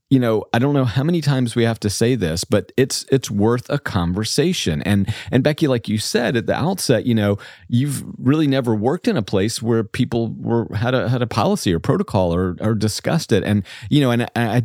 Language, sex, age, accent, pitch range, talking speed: English, male, 40-59, American, 95-125 Hz, 235 wpm